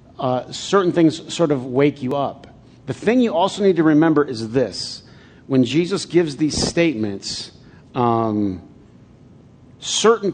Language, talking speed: English, 140 wpm